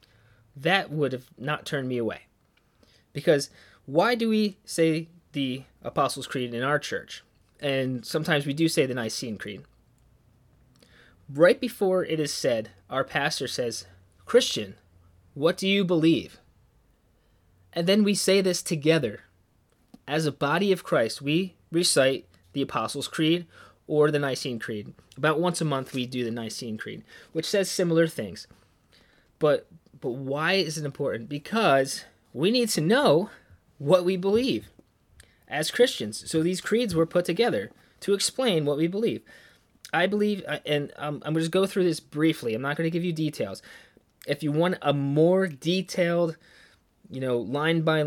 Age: 20-39